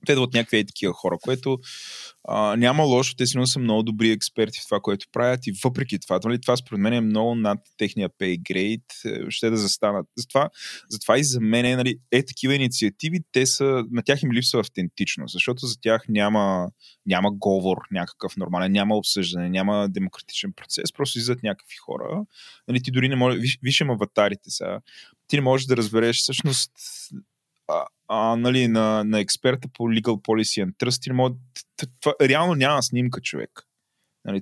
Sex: male